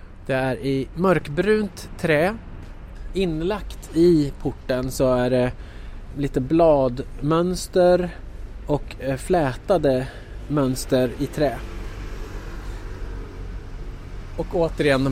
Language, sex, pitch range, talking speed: Swedish, male, 125-160 Hz, 85 wpm